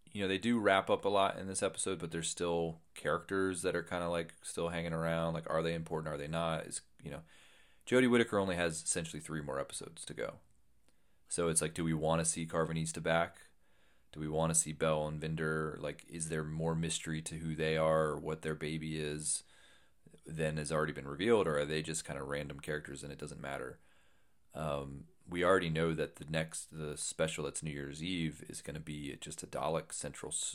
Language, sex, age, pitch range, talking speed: English, male, 30-49, 75-85 Hz, 220 wpm